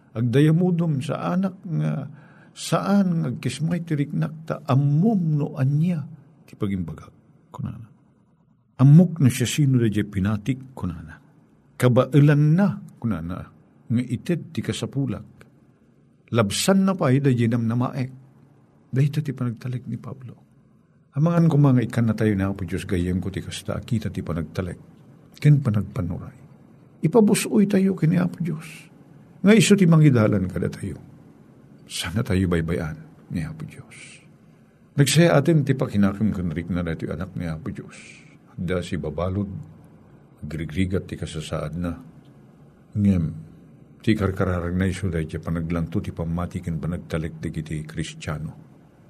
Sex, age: male, 50-69